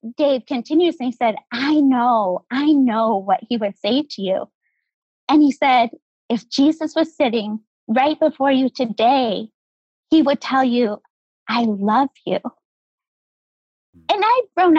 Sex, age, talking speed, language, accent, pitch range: female, 20-39, 145 wpm, English, American, 230-295 Hz